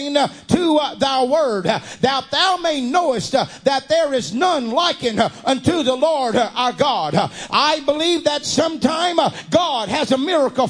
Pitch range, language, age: 280-335 Hz, English, 50-69